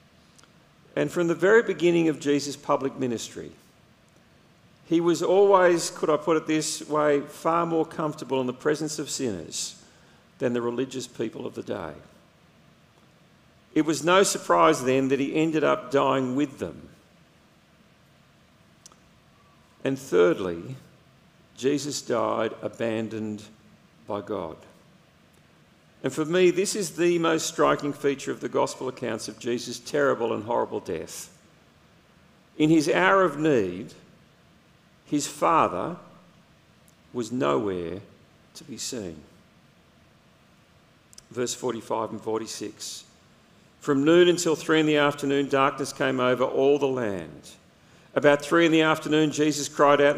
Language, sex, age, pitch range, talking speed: English, male, 50-69, 130-165 Hz, 130 wpm